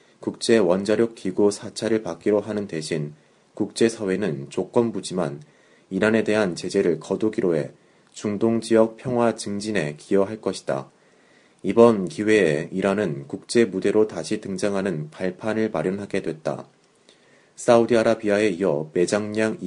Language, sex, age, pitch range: Korean, male, 30-49, 95-115 Hz